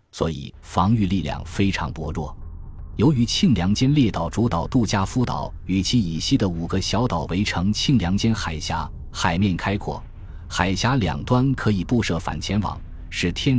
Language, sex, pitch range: Chinese, male, 85-115 Hz